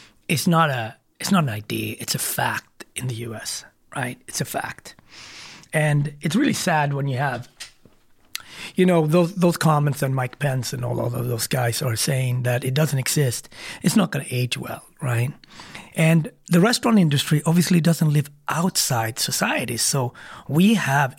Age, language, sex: 30-49, English, male